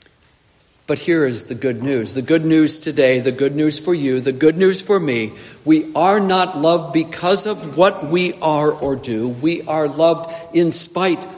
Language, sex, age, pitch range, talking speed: English, male, 50-69, 140-170 Hz, 190 wpm